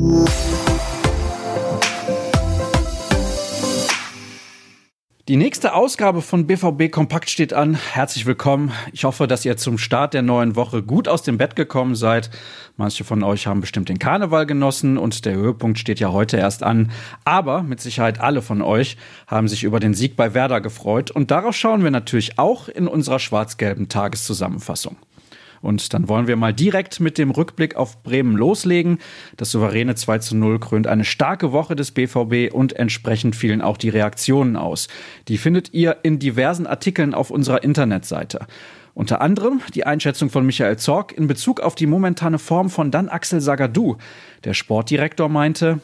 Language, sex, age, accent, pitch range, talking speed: German, male, 40-59, German, 110-155 Hz, 160 wpm